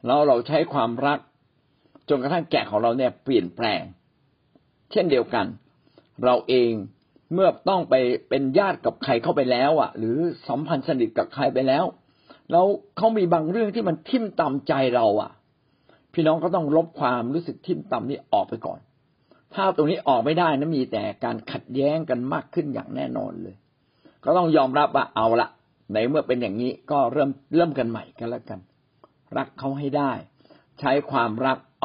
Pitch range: 125-165 Hz